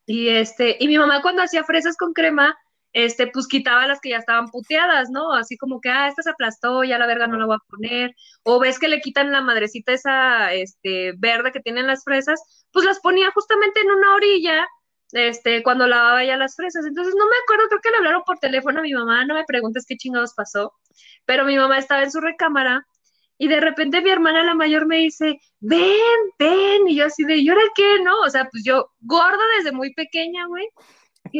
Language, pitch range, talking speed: Spanish, 265-385 Hz, 220 wpm